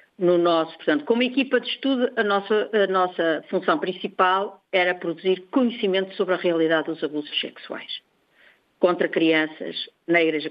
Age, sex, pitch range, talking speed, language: 50-69, female, 170-220 Hz, 145 wpm, Portuguese